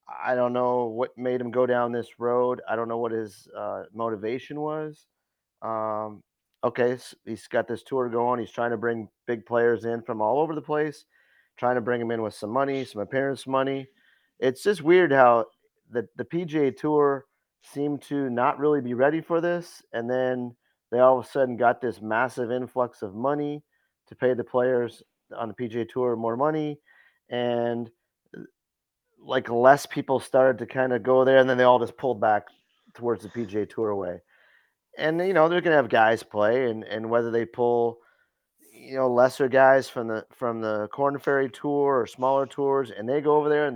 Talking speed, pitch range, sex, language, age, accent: 195 wpm, 120-140 Hz, male, English, 30-49, American